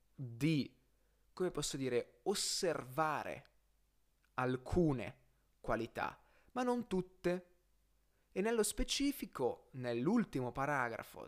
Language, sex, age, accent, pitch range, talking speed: Italian, male, 30-49, native, 125-170 Hz, 80 wpm